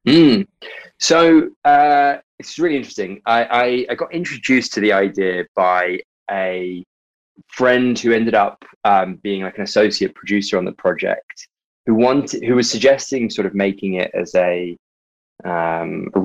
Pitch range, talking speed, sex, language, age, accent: 95-125 Hz, 155 wpm, male, English, 20-39, British